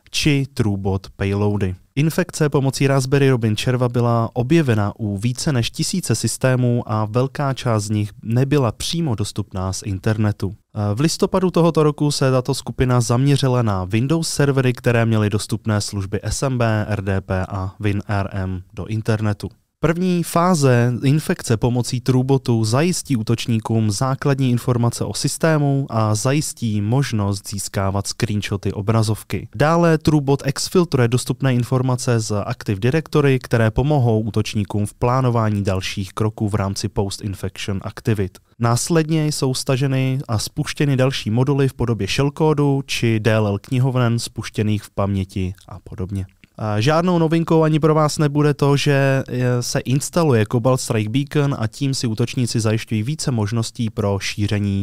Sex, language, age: male, Czech, 20-39